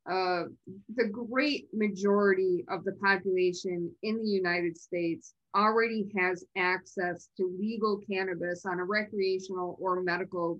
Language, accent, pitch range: English, American, 175-210 Hz